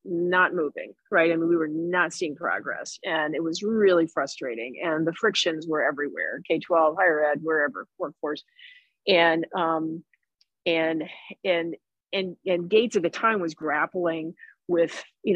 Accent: American